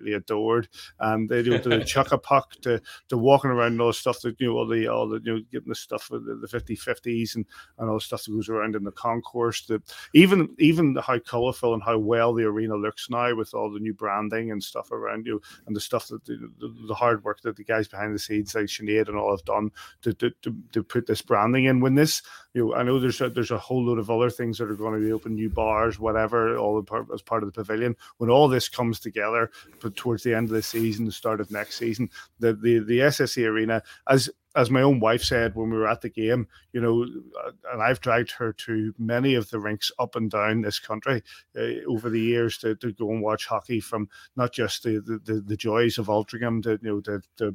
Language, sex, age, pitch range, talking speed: English, male, 30-49, 110-120 Hz, 255 wpm